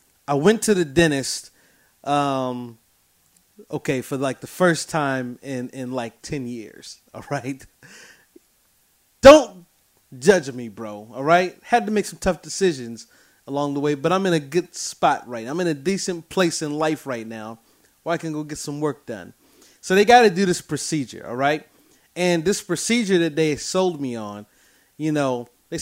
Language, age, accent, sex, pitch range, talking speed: English, 30-49, American, male, 130-170 Hz, 185 wpm